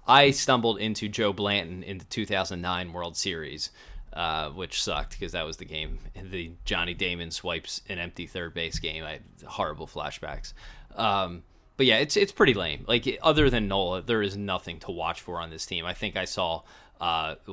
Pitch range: 90-110 Hz